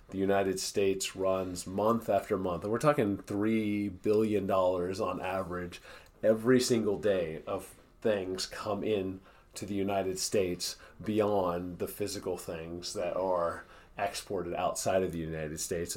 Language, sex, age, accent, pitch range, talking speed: English, male, 30-49, American, 95-115 Hz, 145 wpm